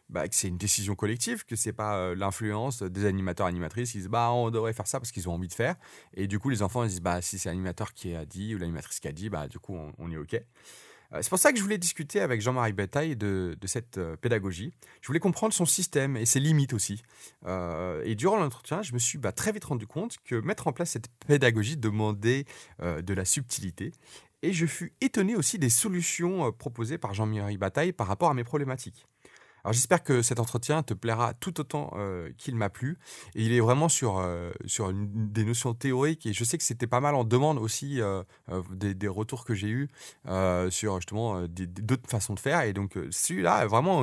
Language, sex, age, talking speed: French, male, 30-49, 240 wpm